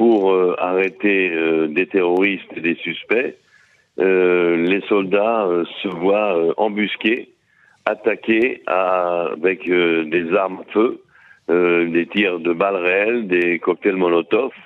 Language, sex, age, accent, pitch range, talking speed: French, male, 60-79, French, 90-105 Hz, 140 wpm